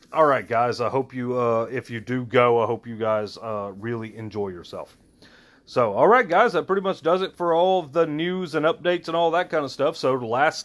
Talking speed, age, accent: 250 wpm, 30-49, American